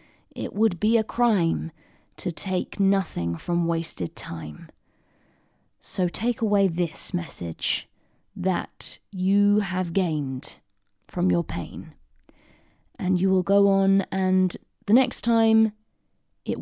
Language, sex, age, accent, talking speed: English, female, 20-39, British, 120 wpm